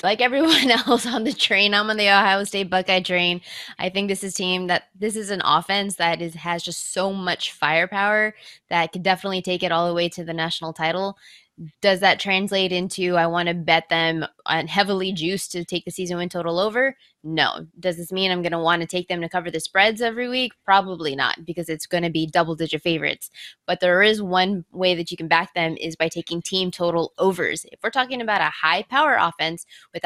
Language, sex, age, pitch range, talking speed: English, female, 20-39, 165-195 Hz, 220 wpm